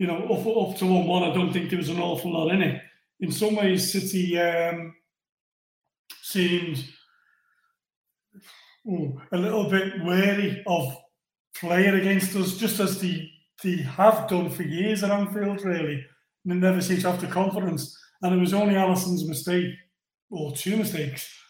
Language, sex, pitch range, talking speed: English, male, 175-200 Hz, 160 wpm